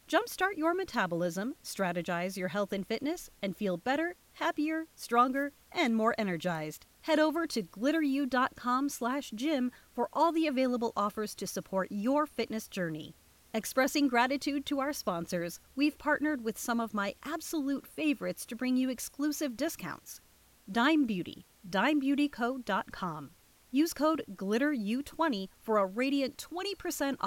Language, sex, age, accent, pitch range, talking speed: English, female, 40-59, American, 200-290 Hz, 130 wpm